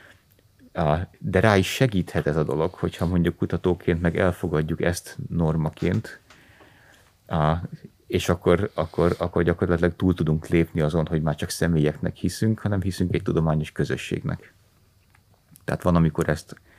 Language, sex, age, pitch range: Hungarian, male, 30-49, 80-95 Hz